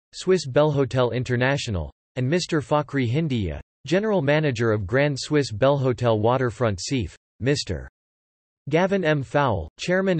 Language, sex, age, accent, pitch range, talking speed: English, male, 40-59, American, 115-145 Hz, 120 wpm